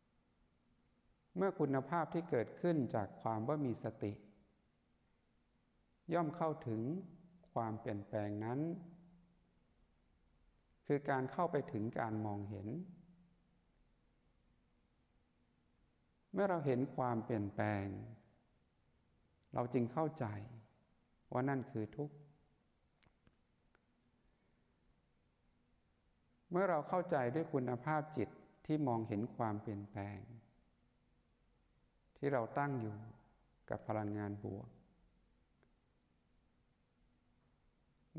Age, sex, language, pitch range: 60-79, male, Thai, 105-150 Hz